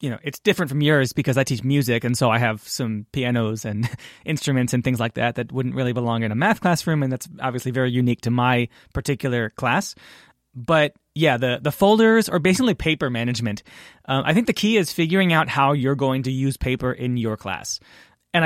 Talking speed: 215 wpm